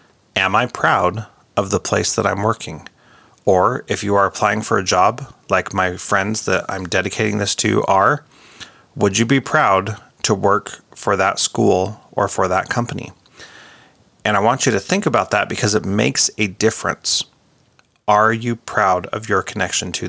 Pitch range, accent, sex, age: 105-130 Hz, American, male, 30-49